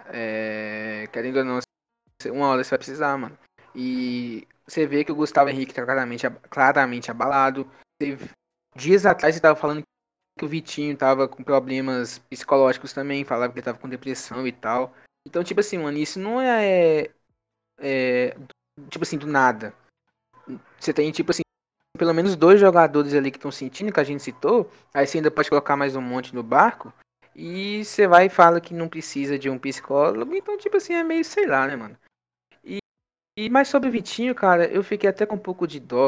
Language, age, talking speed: Portuguese, 10-29, 190 wpm